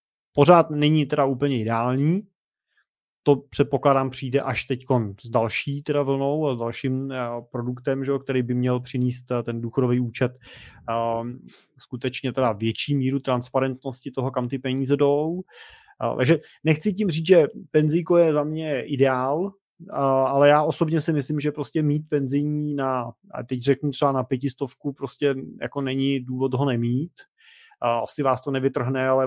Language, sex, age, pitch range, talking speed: Czech, male, 20-39, 125-140 Hz, 160 wpm